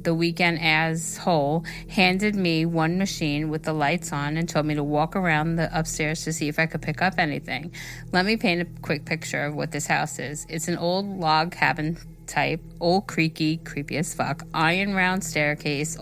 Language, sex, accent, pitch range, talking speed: English, female, American, 155-175 Hz, 200 wpm